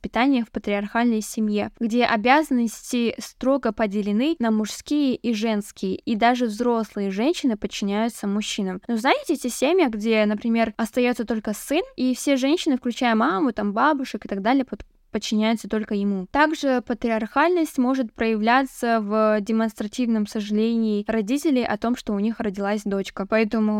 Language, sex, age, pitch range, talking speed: Russian, female, 10-29, 215-250 Hz, 140 wpm